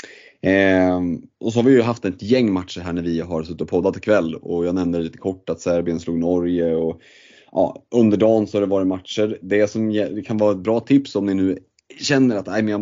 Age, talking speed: 30-49, 245 wpm